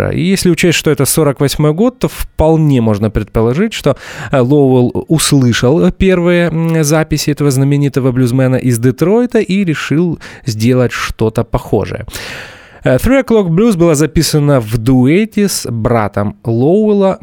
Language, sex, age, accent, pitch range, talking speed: Russian, male, 20-39, native, 110-160 Hz, 125 wpm